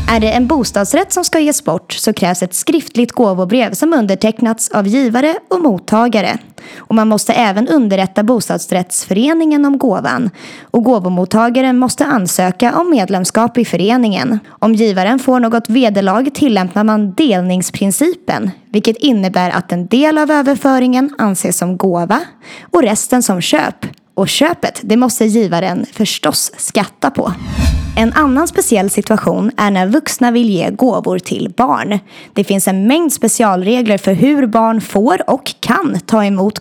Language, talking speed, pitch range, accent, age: Swedish, 150 wpm, 195-255 Hz, native, 20-39